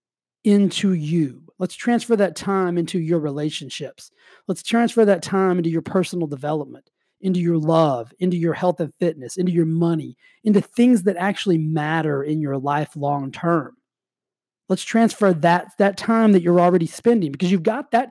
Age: 30-49